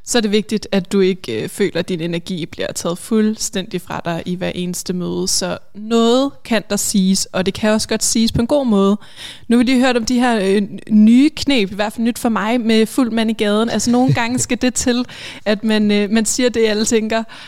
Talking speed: 245 wpm